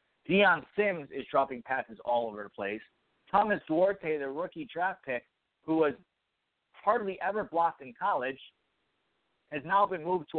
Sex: male